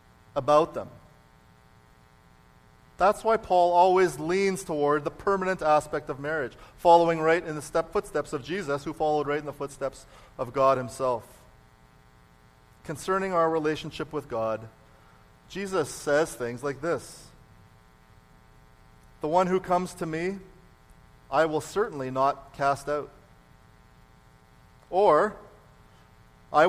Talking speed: 120 wpm